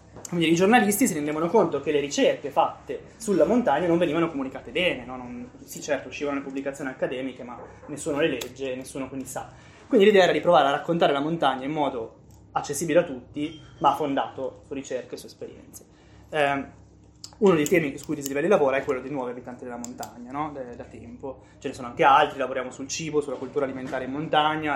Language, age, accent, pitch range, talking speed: Italian, 20-39, native, 130-155 Hz, 205 wpm